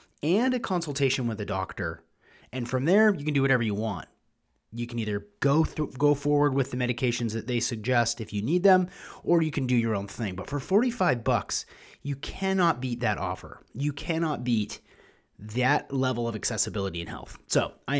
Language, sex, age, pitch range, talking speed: English, male, 30-49, 105-140 Hz, 195 wpm